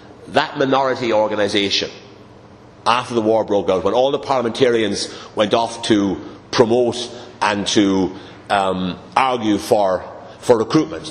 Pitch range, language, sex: 95-110 Hz, English, male